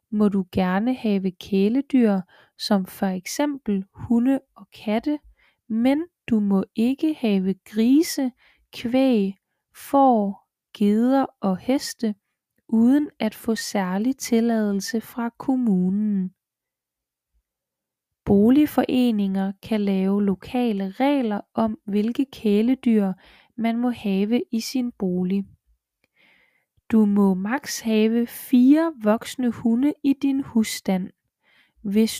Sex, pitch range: female, 200-250 Hz